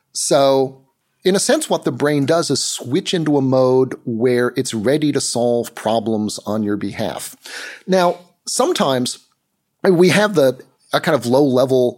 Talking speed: 155 wpm